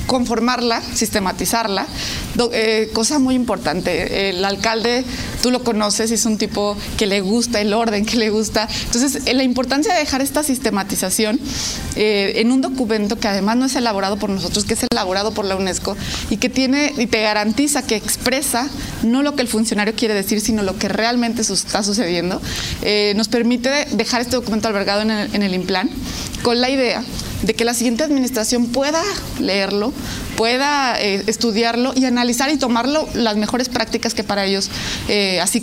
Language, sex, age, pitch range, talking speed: Spanish, female, 30-49, 210-250 Hz, 180 wpm